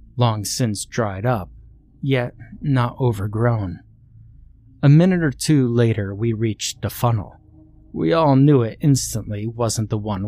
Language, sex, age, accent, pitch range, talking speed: English, male, 30-49, American, 105-130 Hz, 140 wpm